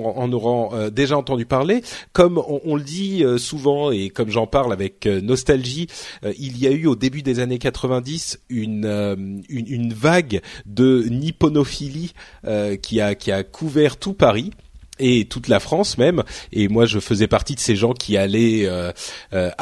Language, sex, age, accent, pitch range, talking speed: French, male, 30-49, French, 110-145 Hz, 170 wpm